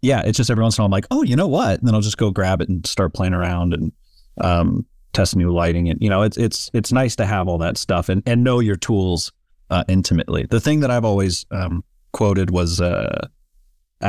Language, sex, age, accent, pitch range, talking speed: English, male, 30-49, American, 90-115 Hz, 245 wpm